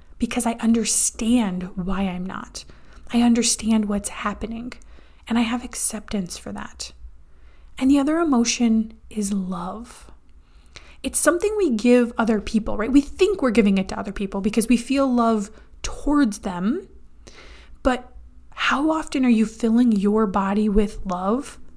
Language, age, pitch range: English, 20-39, 205-260 Hz